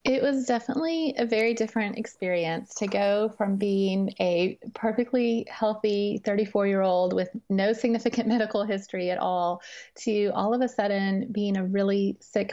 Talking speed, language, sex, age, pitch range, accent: 150 wpm, English, female, 30-49, 190-230 Hz, American